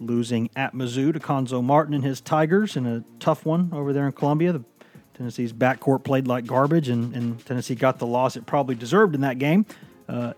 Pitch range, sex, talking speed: 120-145 Hz, male, 200 wpm